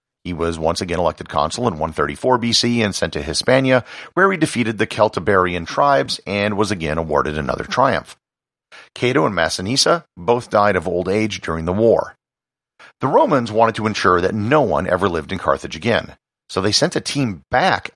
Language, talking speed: English, 185 wpm